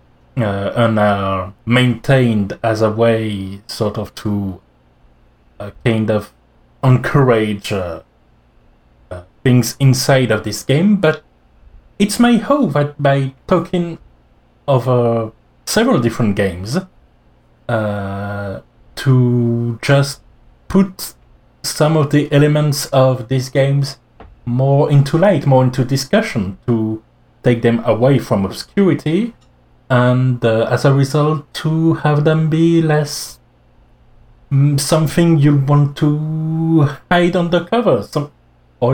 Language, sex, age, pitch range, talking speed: English, male, 30-49, 110-160 Hz, 115 wpm